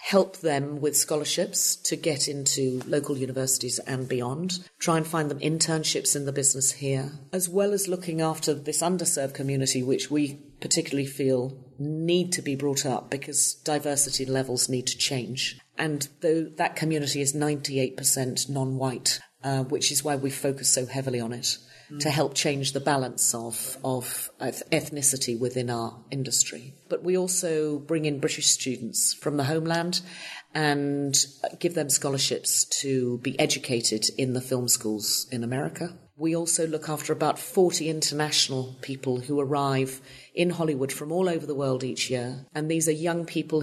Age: 40-59